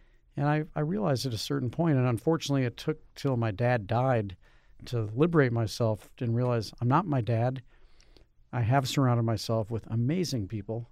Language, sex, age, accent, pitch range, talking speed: English, male, 50-69, American, 110-135 Hz, 175 wpm